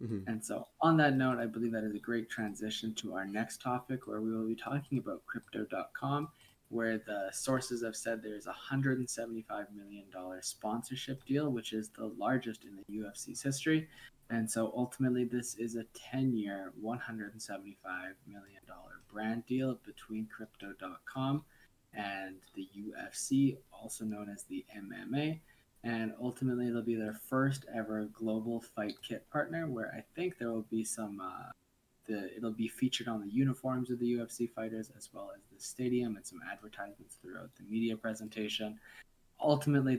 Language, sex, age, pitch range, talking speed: English, male, 20-39, 110-130 Hz, 160 wpm